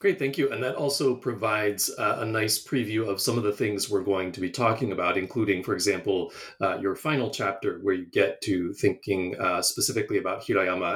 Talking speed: 210 wpm